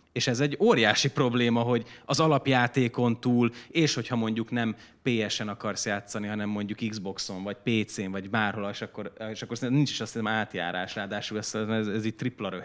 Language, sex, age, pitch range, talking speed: Hungarian, male, 30-49, 105-135 Hz, 180 wpm